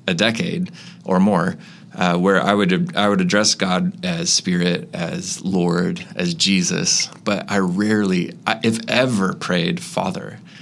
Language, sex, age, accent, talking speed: English, male, 30-49, American, 140 wpm